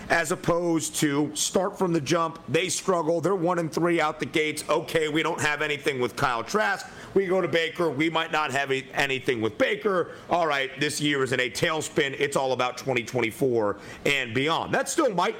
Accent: American